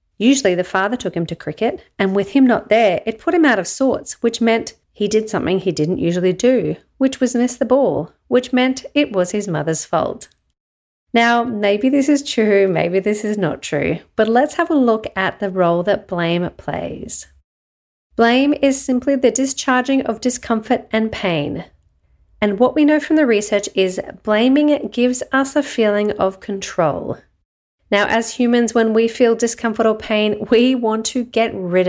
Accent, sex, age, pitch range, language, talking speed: Australian, female, 40-59, 180-245 Hz, English, 185 wpm